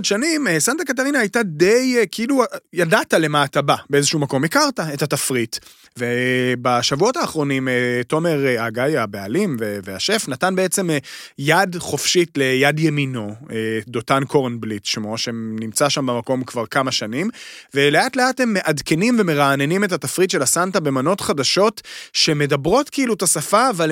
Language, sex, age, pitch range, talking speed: Hebrew, male, 30-49, 135-185 Hz, 115 wpm